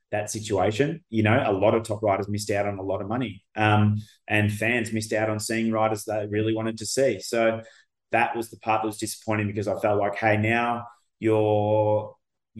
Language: English